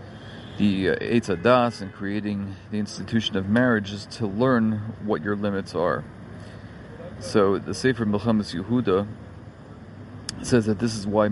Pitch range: 105-115 Hz